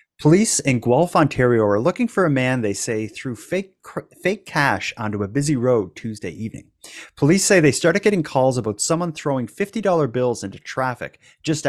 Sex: male